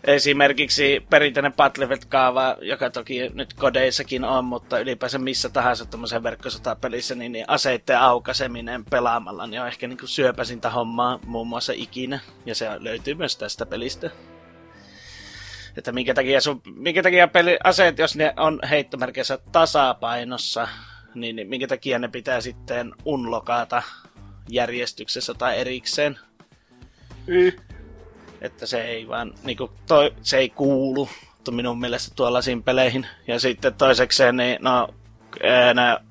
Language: Finnish